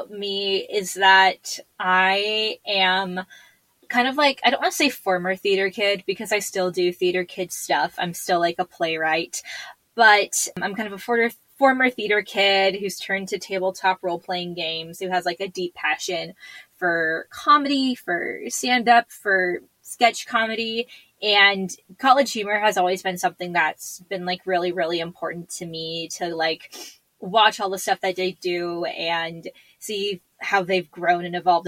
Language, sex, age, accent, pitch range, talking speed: English, female, 10-29, American, 180-215 Hz, 165 wpm